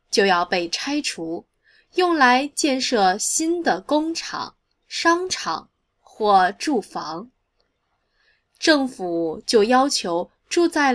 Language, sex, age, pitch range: Chinese, female, 20-39, 190-300 Hz